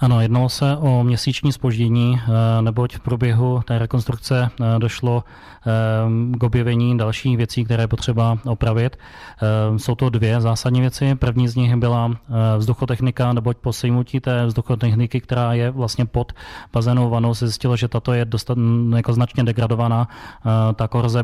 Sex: male